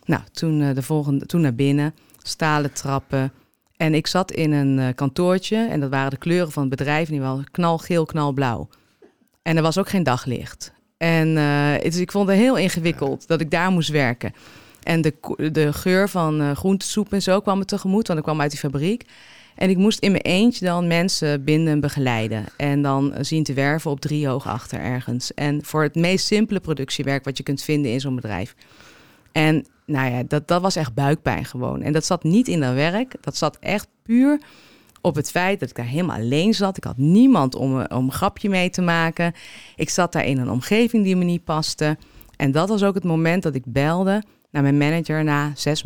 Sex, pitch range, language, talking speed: female, 140-180 Hz, Dutch, 210 wpm